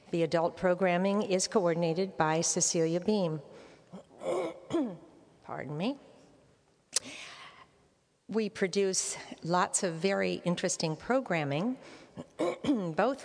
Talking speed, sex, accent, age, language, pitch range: 80 wpm, female, American, 50-69, English, 160-185 Hz